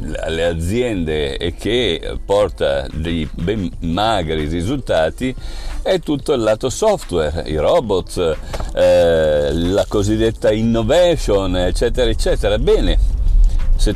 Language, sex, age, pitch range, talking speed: Italian, male, 50-69, 80-130 Hz, 105 wpm